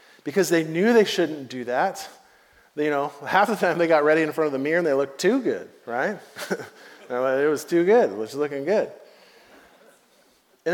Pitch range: 140-180 Hz